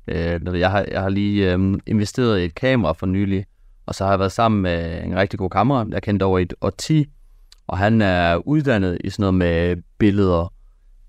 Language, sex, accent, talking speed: Danish, male, native, 190 wpm